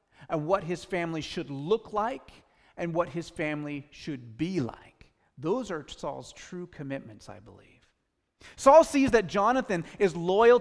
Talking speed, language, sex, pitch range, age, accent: 155 wpm, English, male, 150-225 Hz, 30-49, American